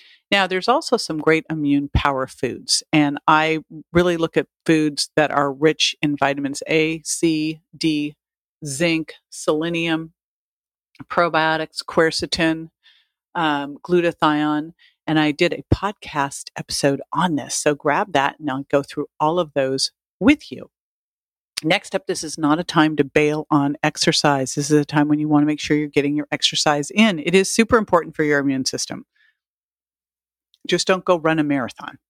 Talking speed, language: 165 wpm, English